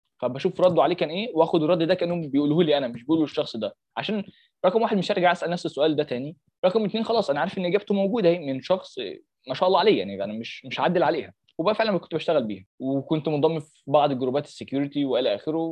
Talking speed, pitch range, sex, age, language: 225 wpm, 145-190 Hz, male, 20-39, English